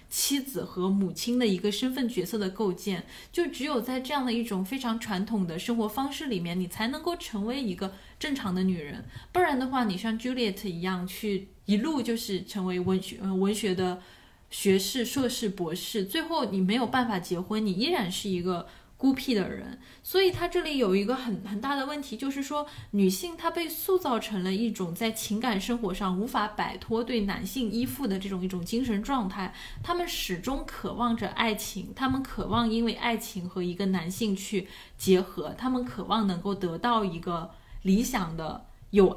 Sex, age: female, 10-29